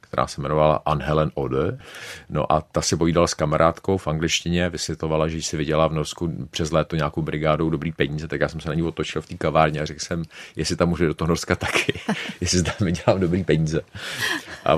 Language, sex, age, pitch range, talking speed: Czech, male, 40-59, 80-90 Hz, 225 wpm